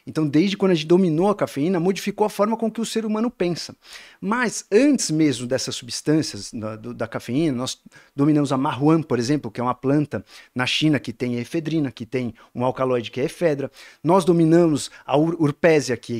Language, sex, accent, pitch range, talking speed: Portuguese, male, Brazilian, 140-210 Hz, 210 wpm